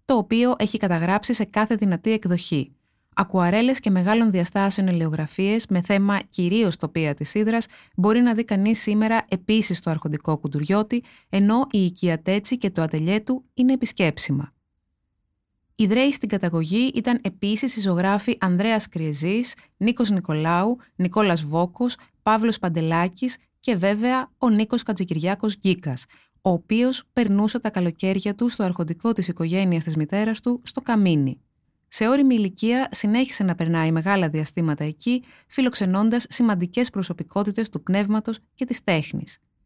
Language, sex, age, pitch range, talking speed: Greek, female, 20-39, 175-230 Hz, 135 wpm